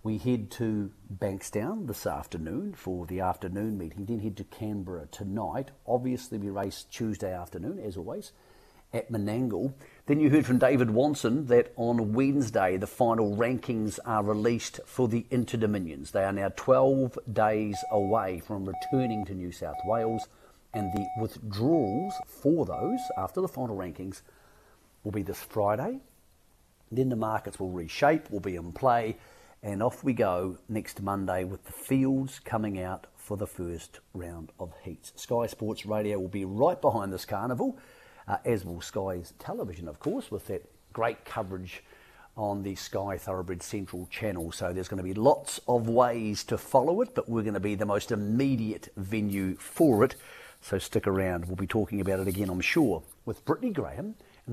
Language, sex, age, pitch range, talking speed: English, male, 50-69, 95-120 Hz, 170 wpm